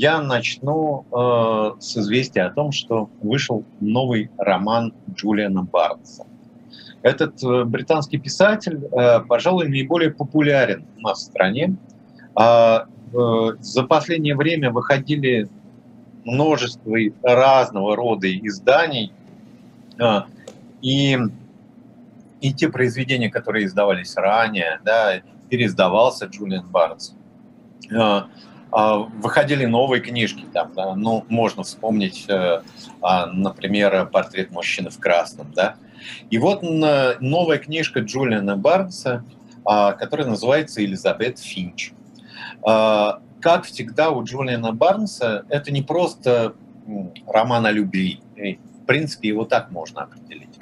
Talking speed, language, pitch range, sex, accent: 100 wpm, Russian, 110-150 Hz, male, native